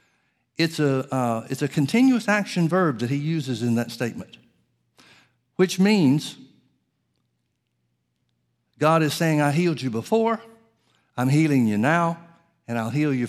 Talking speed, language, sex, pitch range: 140 wpm, English, male, 125-170 Hz